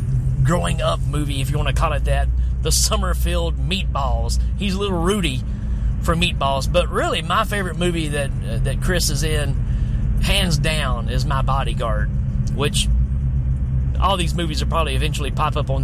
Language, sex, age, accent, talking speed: English, male, 30-49, American, 170 wpm